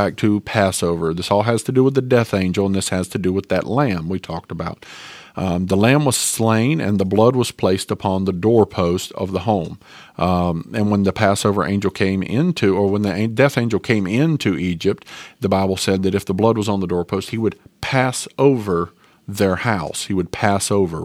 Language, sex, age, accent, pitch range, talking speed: English, male, 40-59, American, 95-130 Hz, 215 wpm